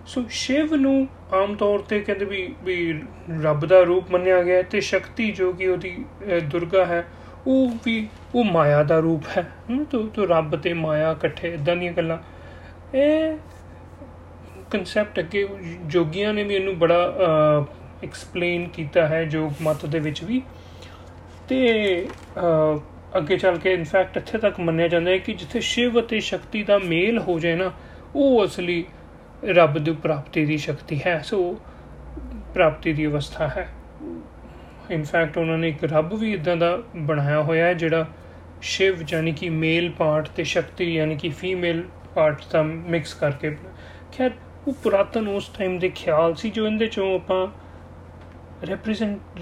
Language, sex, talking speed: Punjabi, male, 155 wpm